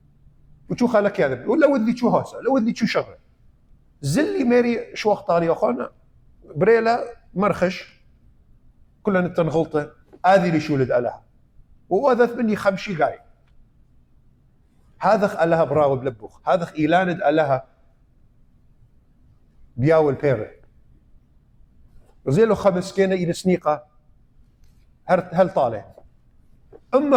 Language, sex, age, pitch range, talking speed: English, male, 50-69, 145-210 Hz, 120 wpm